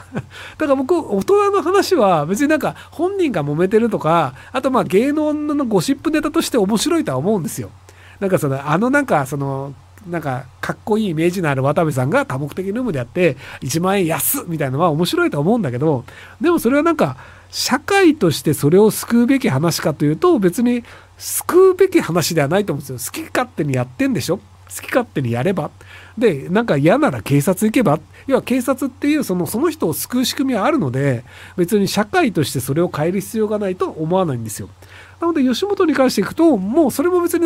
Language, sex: Japanese, male